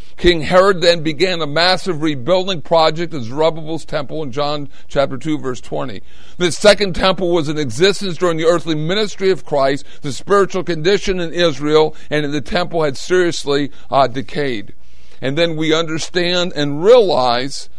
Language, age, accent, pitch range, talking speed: English, 60-79, American, 140-185 Hz, 160 wpm